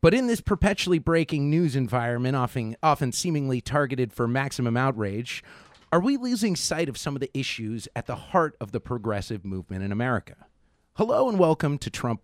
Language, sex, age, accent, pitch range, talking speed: English, male, 30-49, American, 110-155 Hz, 175 wpm